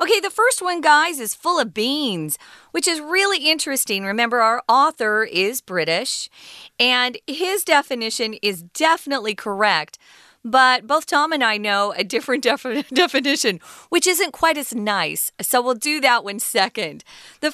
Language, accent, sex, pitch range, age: Chinese, American, female, 205-290 Hz, 40-59